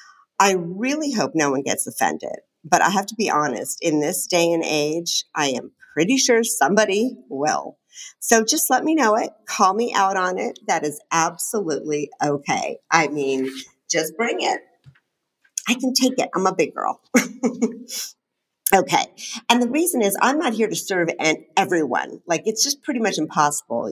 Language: English